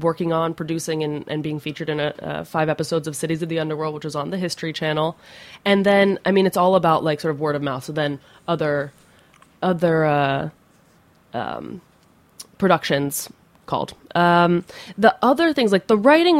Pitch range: 165-220 Hz